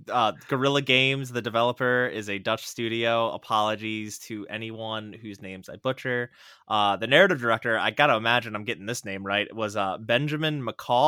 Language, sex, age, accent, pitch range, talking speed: English, male, 20-39, American, 100-130 Hz, 160 wpm